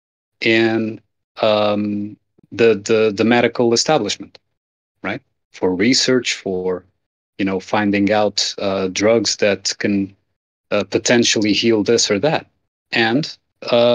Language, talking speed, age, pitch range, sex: English, 115 wpm, 30-49, 100-120 Hz, male